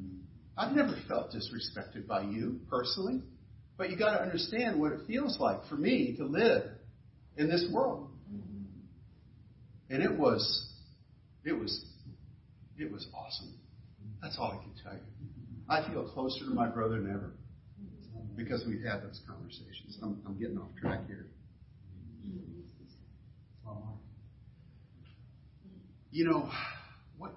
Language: English